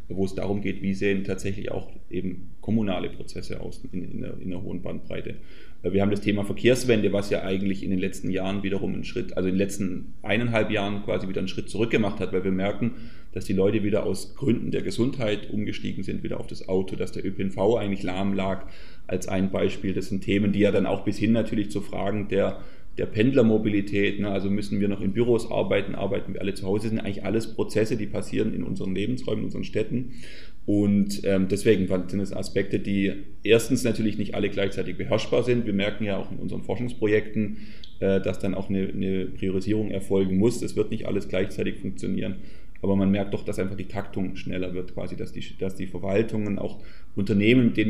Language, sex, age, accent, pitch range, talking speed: German, male, 30-49, German, 95-105 Hz, 210 wpm